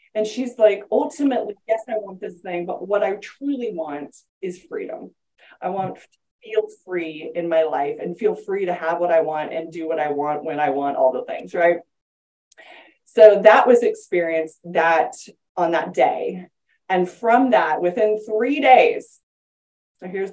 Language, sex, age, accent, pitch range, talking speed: English, female, 20-39, American, 195-255 Hz, 175 wpm